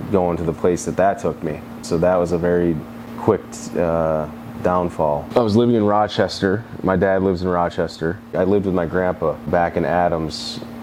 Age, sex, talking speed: 30-49, male, 190 wpm